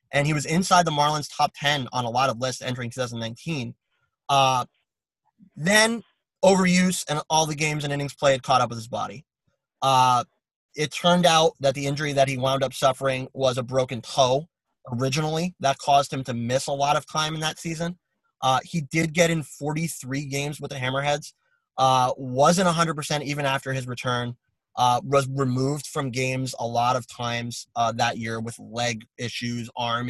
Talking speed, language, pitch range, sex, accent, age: 185 wpm, English, 130-170 Hz, male, American, 20-39